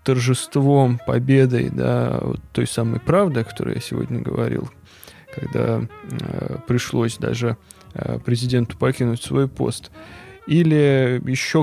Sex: male